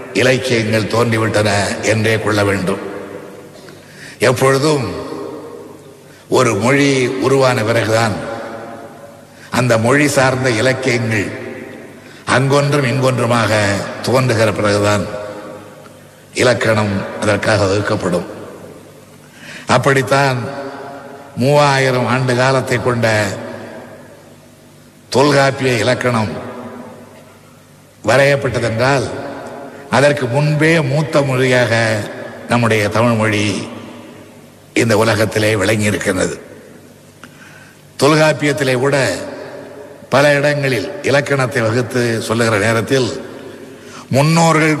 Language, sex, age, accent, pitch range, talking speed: Tamil, male, 60-79, native, 110-135 Hz, 65 wpm